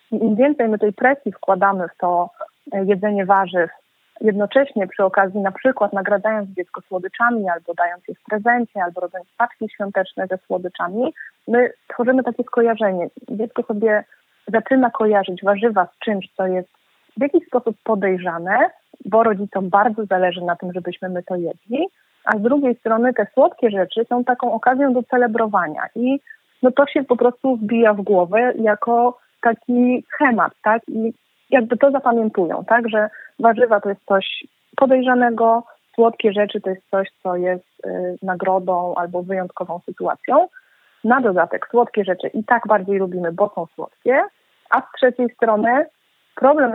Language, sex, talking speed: Polish, female, 155 wpm